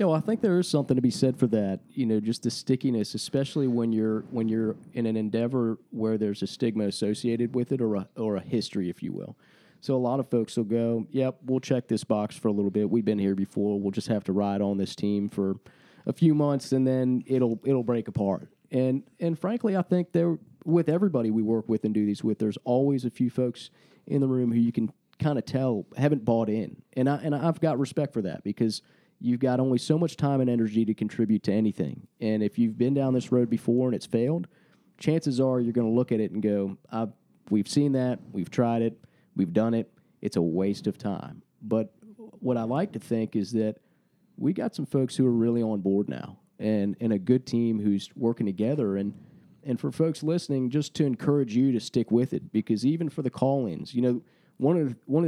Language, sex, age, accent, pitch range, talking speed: English, male, 30-49, American, 110-135 Hz, 240 wpm